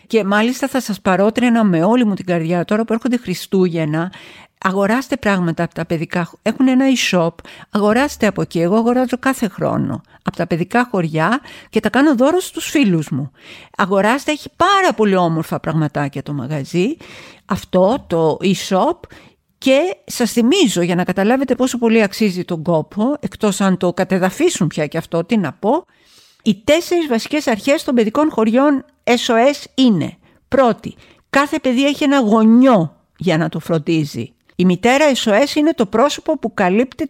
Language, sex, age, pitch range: Greek, female, 50-69, 185-270 Hz